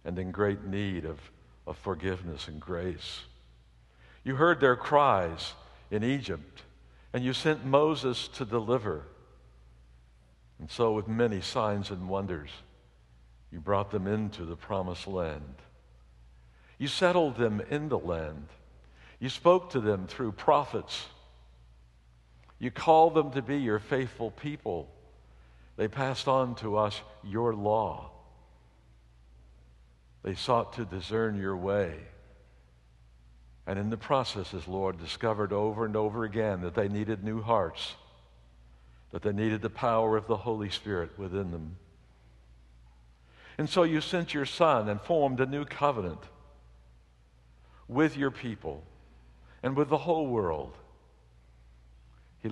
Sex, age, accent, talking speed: male, 60-79, American, 130 wpm